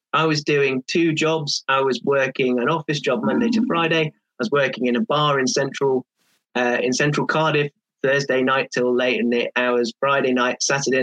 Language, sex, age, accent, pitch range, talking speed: English, male, 30-49, British, 125-160 Hz, 195 wpm